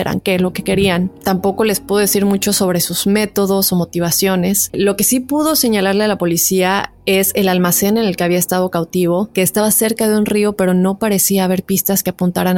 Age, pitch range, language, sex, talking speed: 20-39, 180-205 Hz, Spanish, female, 215 wpm